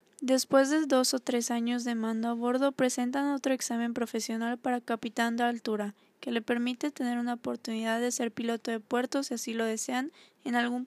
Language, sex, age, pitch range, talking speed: Spanish, female, 10-29, 225-250 Hz, 195 wpm